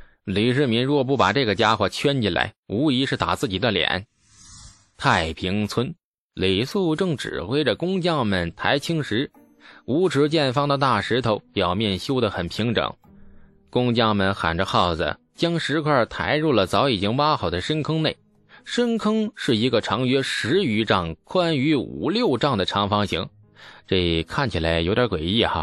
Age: 20-39